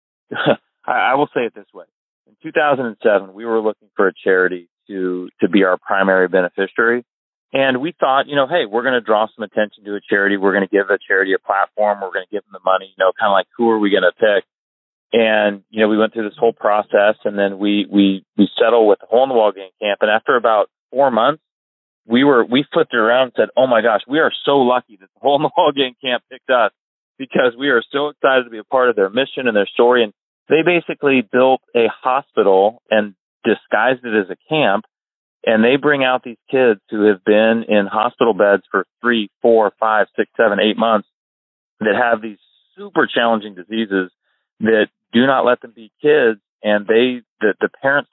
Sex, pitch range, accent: male, 100-125 Hz, American